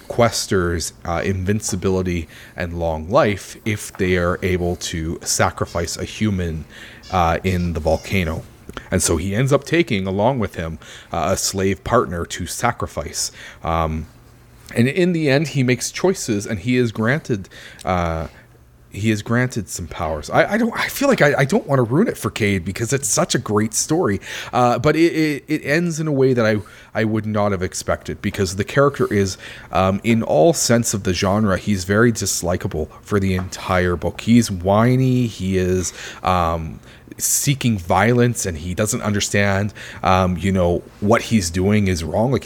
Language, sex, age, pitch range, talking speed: English, male, 30-49, 95-120 Hz, 180 wpm